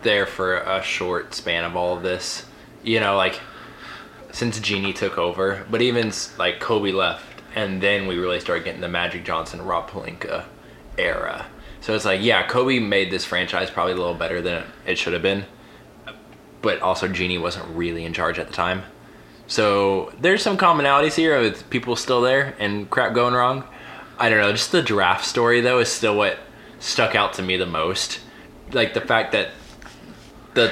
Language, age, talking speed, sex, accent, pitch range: English, 20-39, 185 wpm, male, American, 95-120 Hz